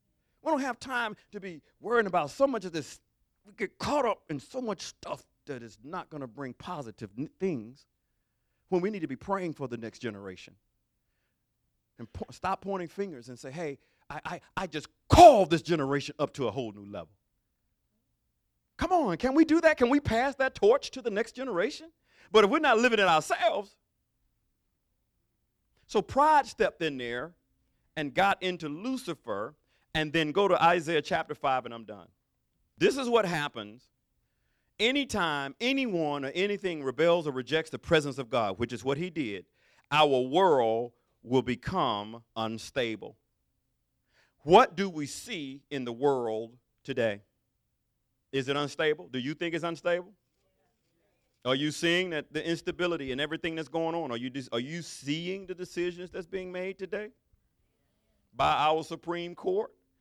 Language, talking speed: English, 165 wpm